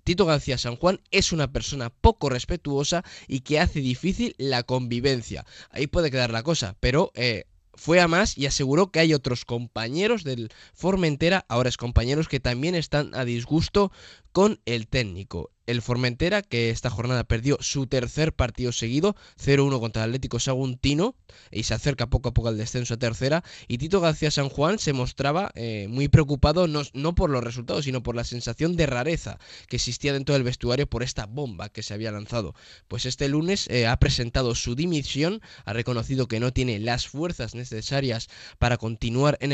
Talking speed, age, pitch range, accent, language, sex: 185 wpm, 10-29, 115-145 Hz, Spanish, Spanish, male